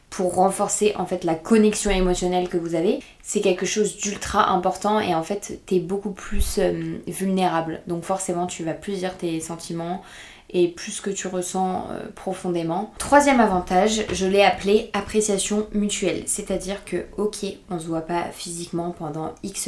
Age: 20-39